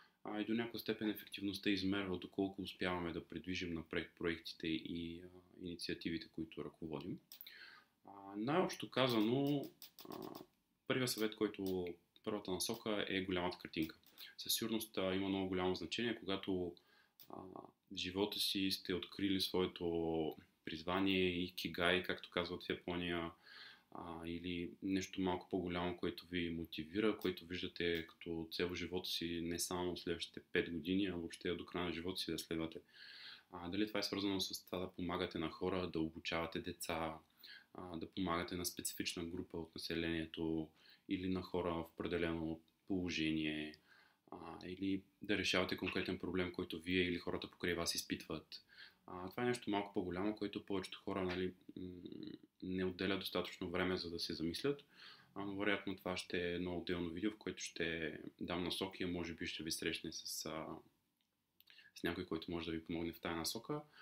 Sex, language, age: male, English, 30-49